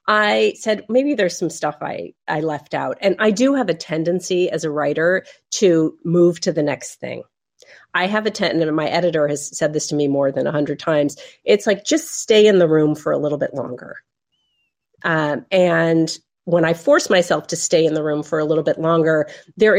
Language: English